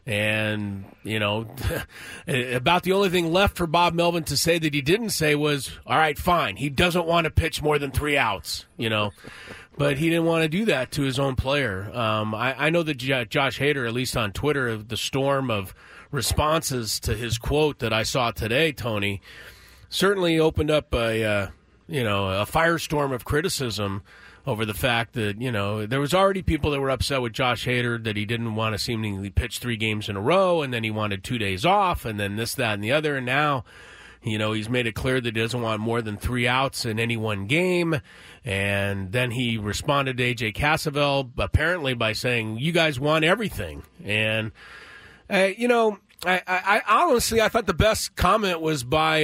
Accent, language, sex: American, English, male